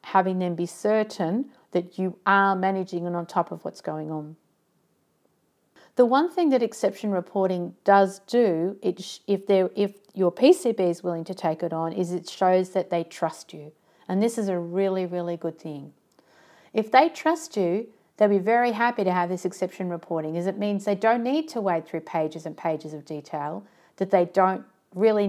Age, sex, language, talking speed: 50-69, female, English, 185 wpm